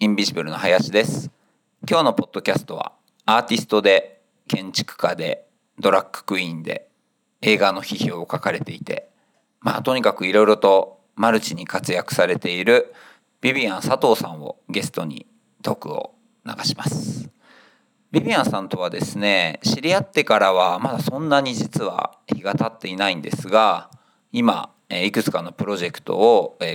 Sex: male